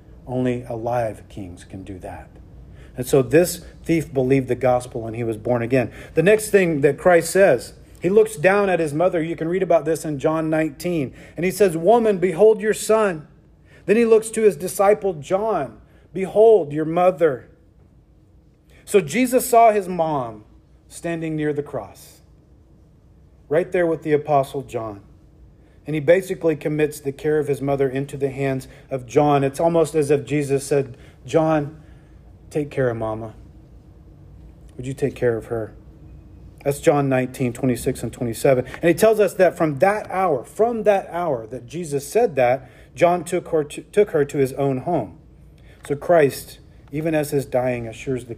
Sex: male